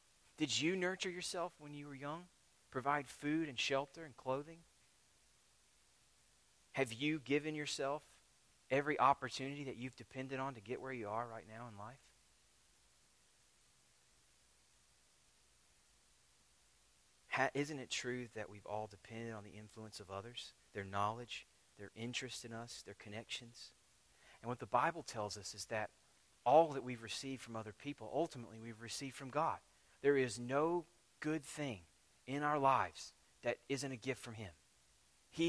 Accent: American